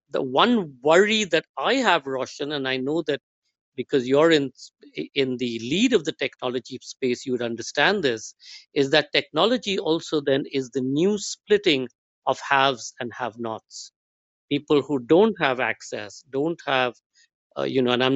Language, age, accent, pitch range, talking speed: English, 50-69, Indian, 125-150 Hz, 165 wpm